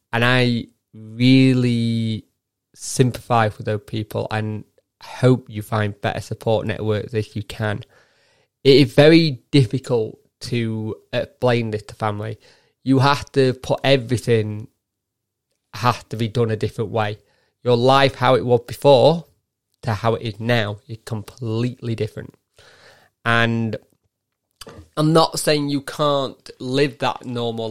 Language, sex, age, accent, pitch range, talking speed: English, male, 20-39, British, 110-130 Hz, 130 wpm